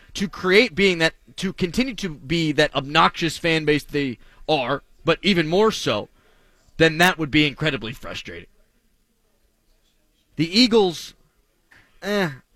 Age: 20-39